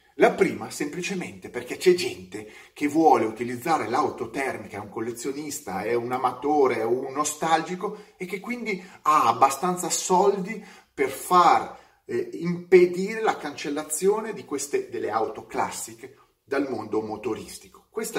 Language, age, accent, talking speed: Italian, 30-49, native, 135 wpm